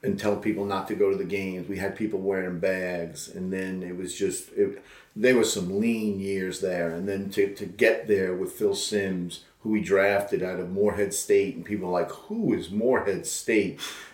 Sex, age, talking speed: male, 40-59, 210 wpm